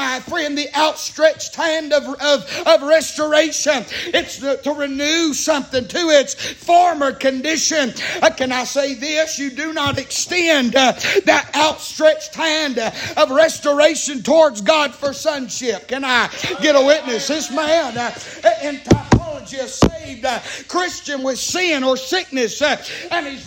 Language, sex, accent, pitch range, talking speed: English, male, American, 280-345 Hz, 150 wpm